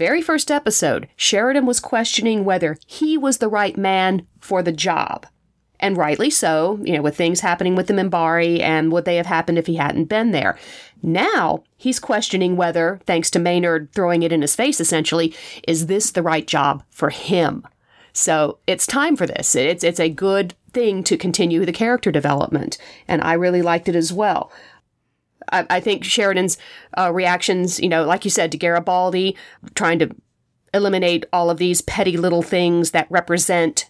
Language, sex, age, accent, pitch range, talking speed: English, female, 40-59, American, 165-190 Hz, 180 wpm